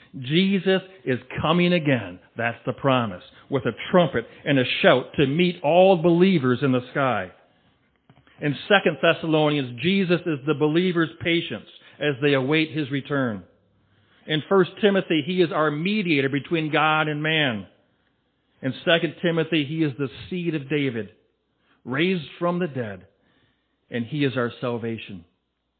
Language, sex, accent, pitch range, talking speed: English, male, American, 125-165 Hz, 145 wpm